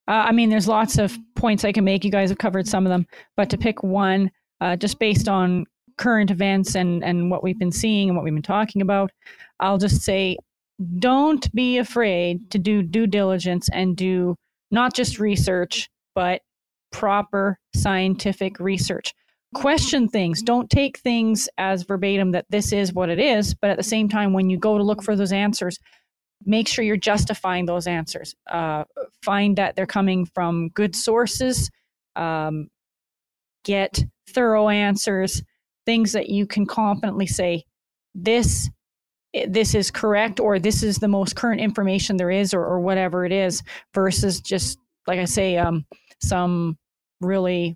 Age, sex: 30-49, female